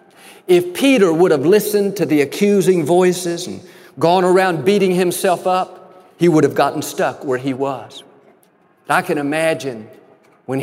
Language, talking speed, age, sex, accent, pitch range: English, 150 wpm, 50-69, male, American, 160-205 Hz